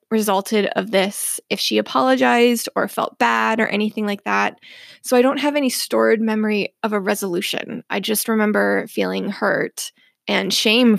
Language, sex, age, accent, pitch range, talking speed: English, female, 20-39, American, 210-245 Hz, 165 wpm